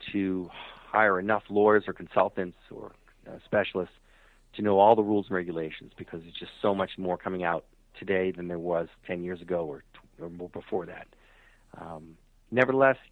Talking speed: 180 wpm